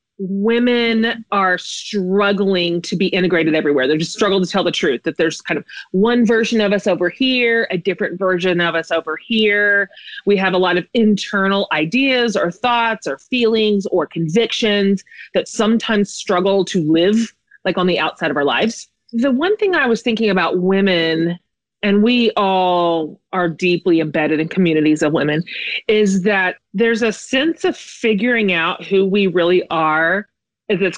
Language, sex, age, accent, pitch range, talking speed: English, female, 30-49, American, 170-215 Hz, 170 wpm